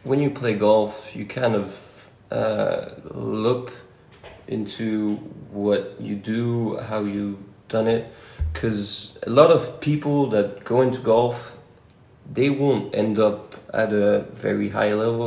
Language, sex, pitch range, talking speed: English, male, 105-125 Hz, 140 wpm